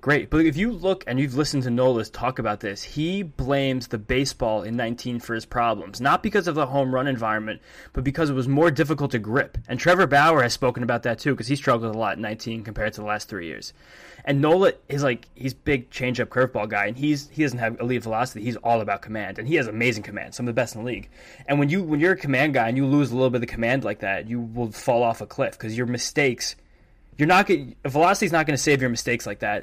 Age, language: 20-39, English